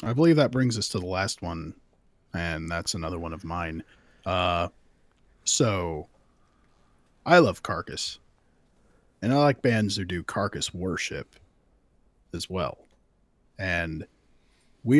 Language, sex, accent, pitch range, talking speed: English, male, American, 95-130 Hz, 130 wpm